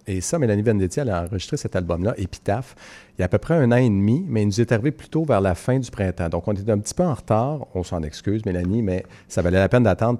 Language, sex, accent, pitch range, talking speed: French, male, Canadian, 90-110 Hz, 290 wpm